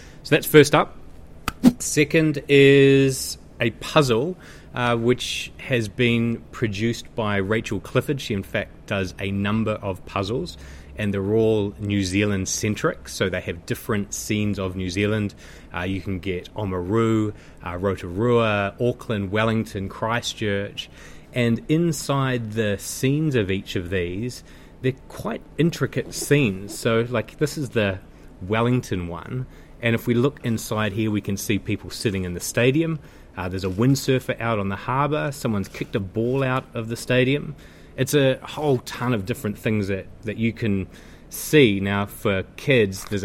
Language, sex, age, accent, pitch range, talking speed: English, male, 30-49, Australian, 95-125 Hz, 155 wpm